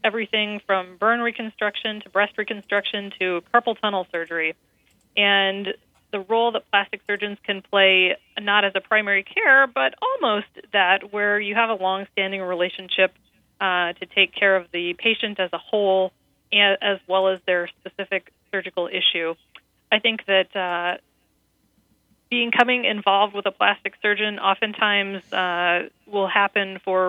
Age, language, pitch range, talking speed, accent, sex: 30-49, English, 185-215 Hz, 145 wpm, American, female